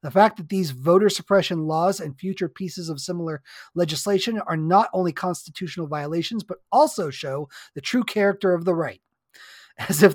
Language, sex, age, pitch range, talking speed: English, male, 30-49, 165-200 Hz, 170 wpm